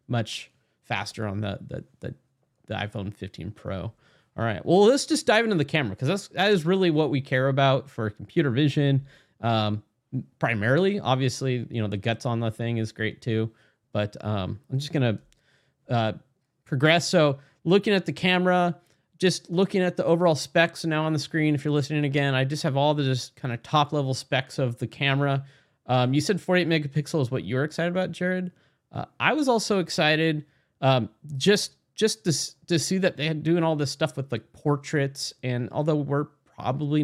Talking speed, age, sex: 195 wpm, 30-49, male